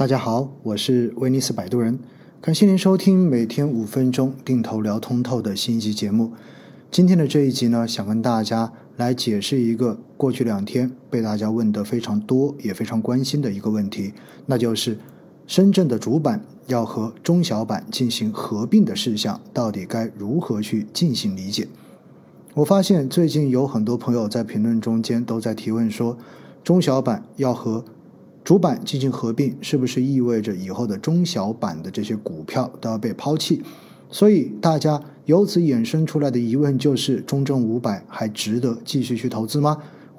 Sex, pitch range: male, 115-145 Hz